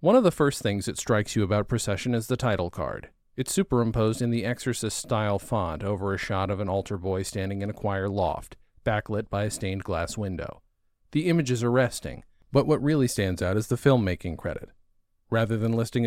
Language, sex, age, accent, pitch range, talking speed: English, male, 40-59, American, 105-130 Hz, 200 wpm